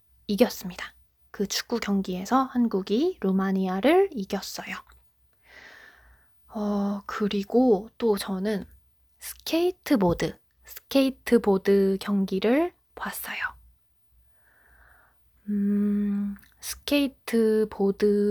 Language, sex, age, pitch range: Korean, female, 20-39, 195-230 Hz